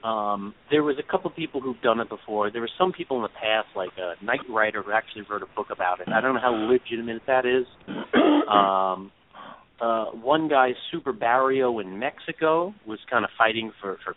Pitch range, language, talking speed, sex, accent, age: 105-140 Hz, English, 210 wpm, male, American, 40-59